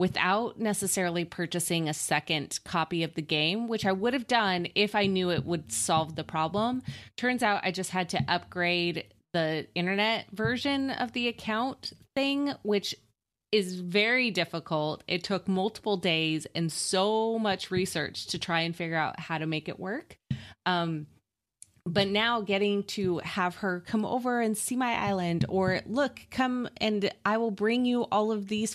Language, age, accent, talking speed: English, 20-39, American, 170 wpm